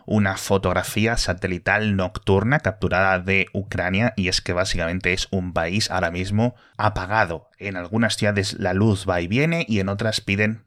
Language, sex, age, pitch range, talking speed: Spanish, male, 20-39, 95-110 Hz, 165 wpm